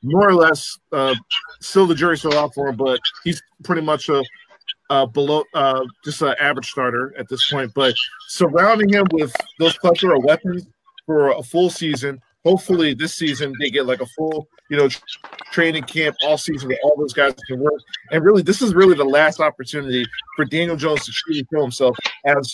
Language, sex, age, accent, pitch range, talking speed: English, male, 40-59, American, 135-170 Hz, 200 wpm